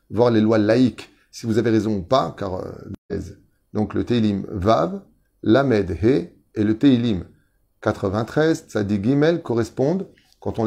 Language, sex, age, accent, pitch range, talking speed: French, male, 30-49, French, 110-150 Hz, 155 wpm